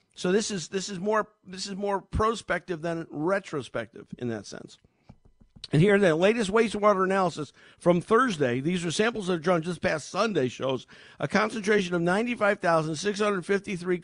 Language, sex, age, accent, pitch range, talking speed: English, male, 50-69, American, 170-215 Hz, 160 wpm